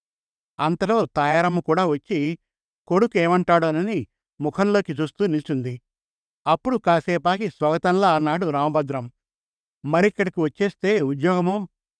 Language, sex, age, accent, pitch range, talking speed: Telugu, male, 50-69, native, 150-190 Hz, 80 wpm